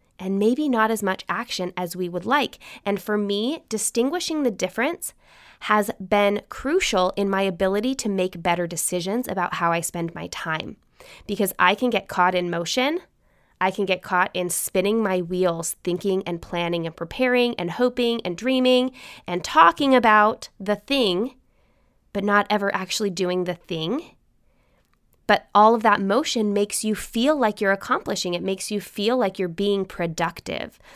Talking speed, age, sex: 170 wpm, 20-39, female